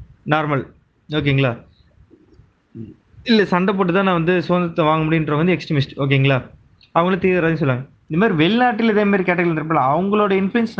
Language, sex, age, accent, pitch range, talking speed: Tamil, male, 20-39, native, 135-175 Hz, 140 wpm